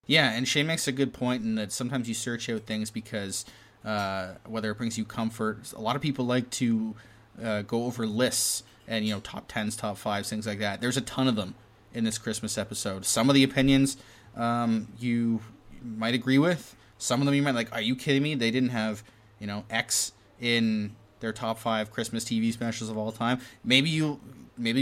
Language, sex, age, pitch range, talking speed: English, male, 20-39, 110-125 Hz, 215 wpm